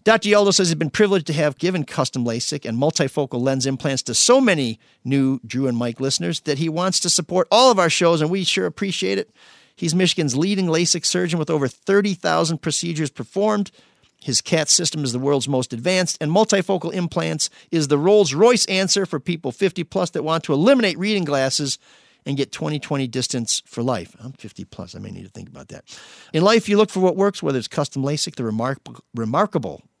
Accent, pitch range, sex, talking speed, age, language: American, 135-185 Hz, male, 200 wpm, 50-69, English